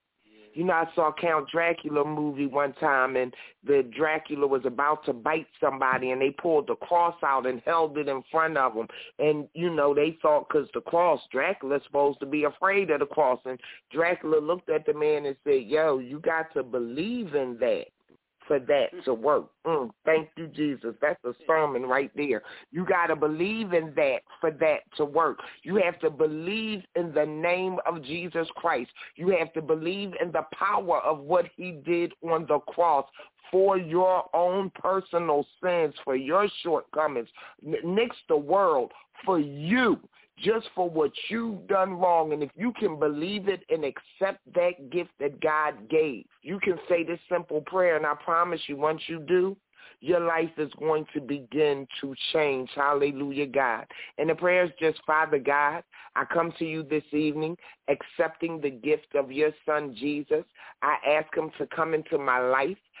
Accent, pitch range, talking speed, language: American, 145-175 Hz, 185 wpm, English